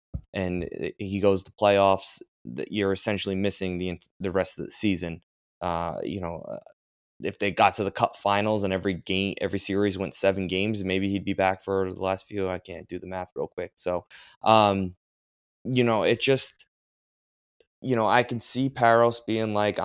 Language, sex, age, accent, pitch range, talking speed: English, male, 20-39, American, 95-105 Hz, 185 wpm